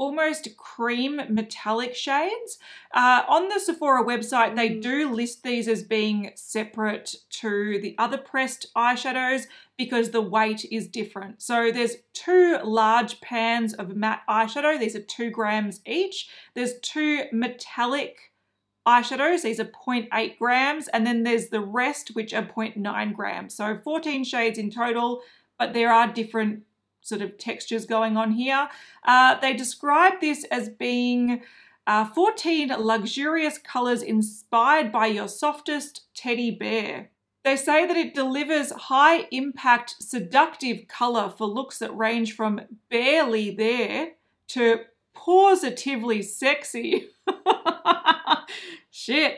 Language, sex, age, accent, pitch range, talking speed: English, female, 30-49, Australian, 225-290 Hz, 130 wpm